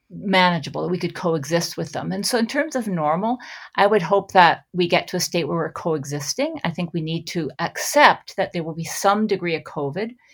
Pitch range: 160-195 Hz